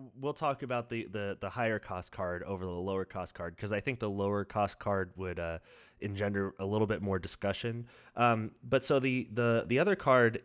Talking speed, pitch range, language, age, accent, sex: 210 wpm, 100-125 Hz, English, 30-49, American, male